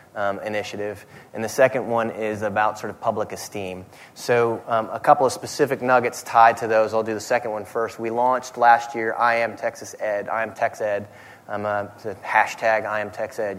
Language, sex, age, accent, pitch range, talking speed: English, male, 30-49, American, 105-125 Hz, 210 wpm